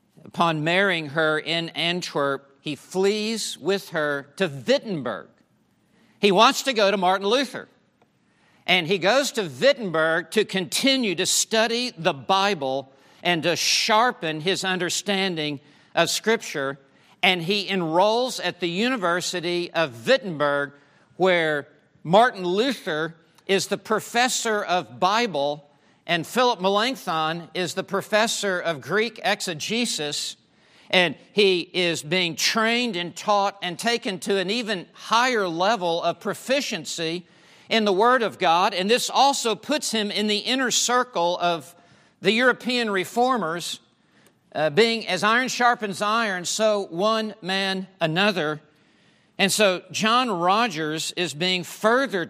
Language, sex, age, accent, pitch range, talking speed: English, male, 50-69, American, 165-215 Hz, 130 wpm